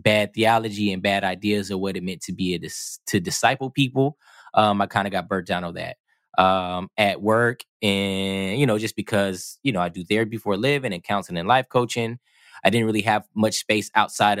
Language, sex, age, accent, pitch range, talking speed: English, male, 20-39, American, 100-120 Hz, 215 wpm